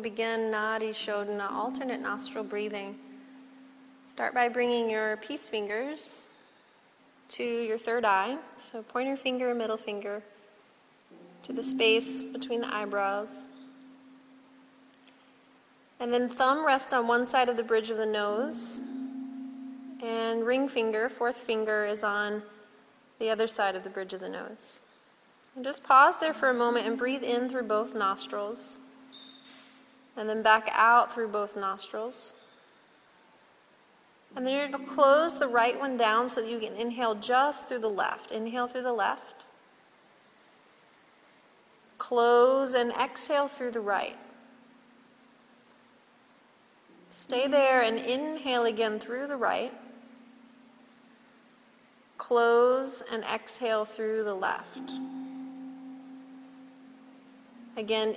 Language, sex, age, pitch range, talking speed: English, female, 30-49, 225-265 Hz, 125 wpm